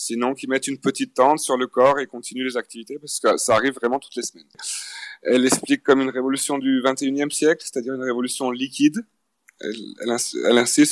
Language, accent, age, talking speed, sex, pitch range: French, French, 30-49, 205 wpm, male, 125-155 Hz